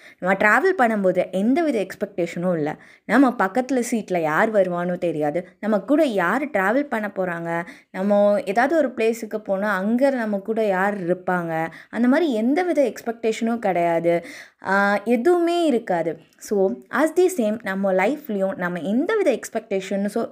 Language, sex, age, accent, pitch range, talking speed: Tamil, female, 20-39, native, 190-265 Hz, 140 wpm